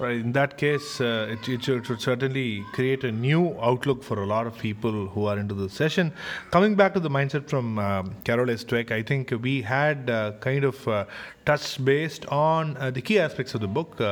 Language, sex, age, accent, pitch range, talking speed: Tamil, male, 30-49, native, 120-145 Hz, 210 wpm